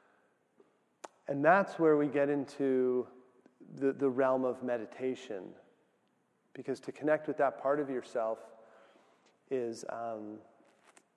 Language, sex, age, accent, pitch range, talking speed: English, male, 40-59, American, 115-135 Hz, 115 wpm